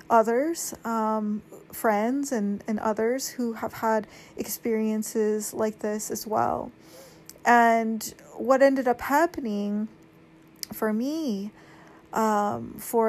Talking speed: 105 wpm